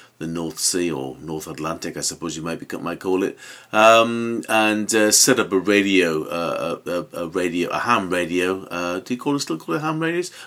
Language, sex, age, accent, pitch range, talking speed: English, male, 40-59, British, 85-110 Hz, 225 wpm